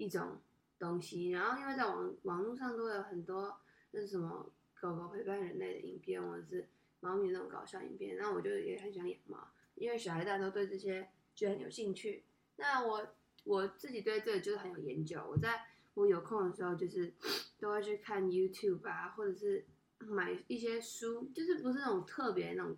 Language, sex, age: Chinese, female, 10-29